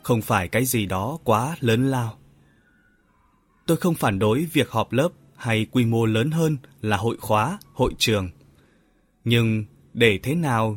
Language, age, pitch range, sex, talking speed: Vietnamese, 20-39, 110-145 Hz, male, 160 wpm